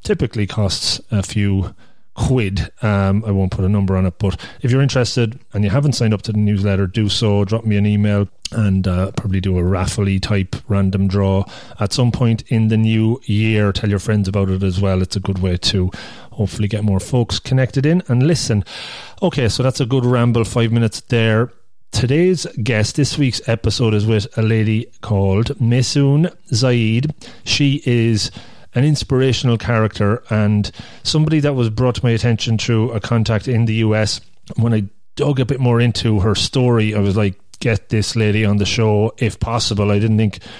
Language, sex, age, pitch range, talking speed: English, male, 30-49, 105-125 Hz, 190 wpm